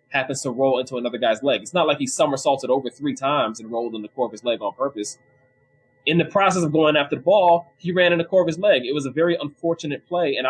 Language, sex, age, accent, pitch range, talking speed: English, male, 20-39, American, 135-185 Hz, 275 wpm